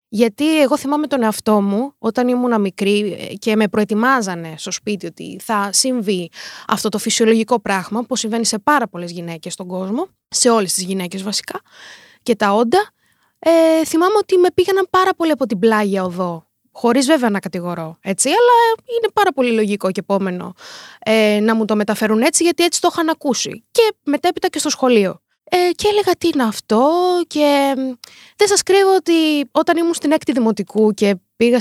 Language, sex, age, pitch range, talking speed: Greek, female, 20-39, 210-315 Hz, 175 wpm